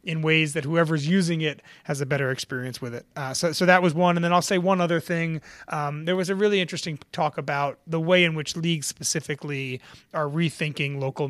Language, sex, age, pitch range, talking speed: English, male, 30-49, 140-170 Hz, 225 wpm